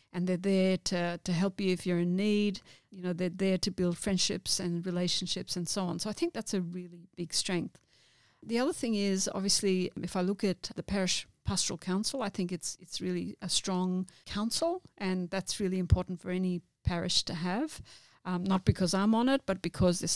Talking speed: 210 wpm